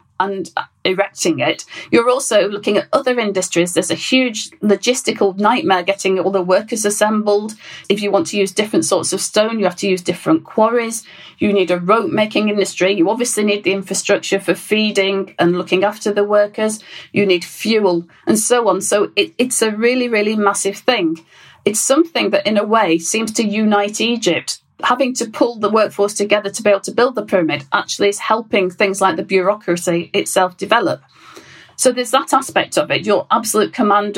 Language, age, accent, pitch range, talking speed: English, 40-59, British, 190-230 Hz, 185 wpm